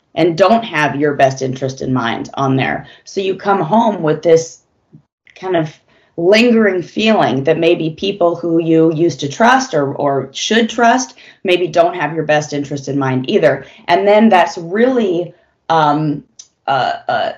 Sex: female